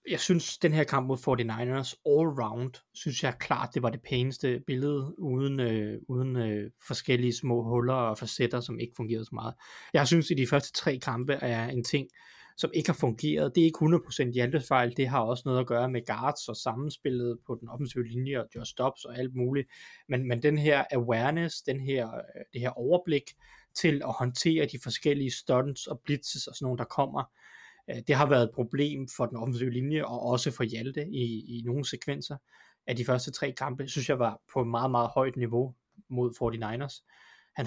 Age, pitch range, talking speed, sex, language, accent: 30-49, 120-140 Hz, 200 wpm, male, Danish, native